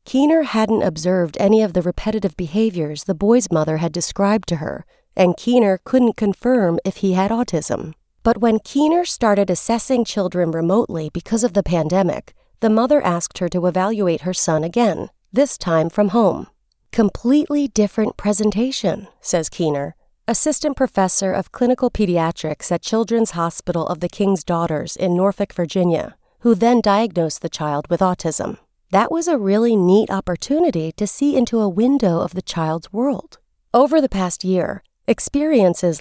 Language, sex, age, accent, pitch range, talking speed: English, female, 40-59, American, 175-230 Hz, 155 wpm